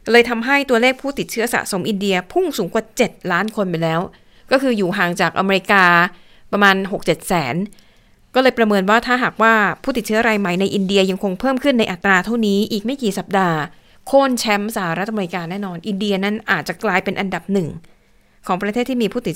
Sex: female